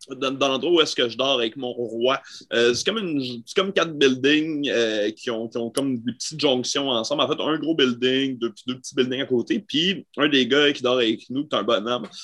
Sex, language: male, French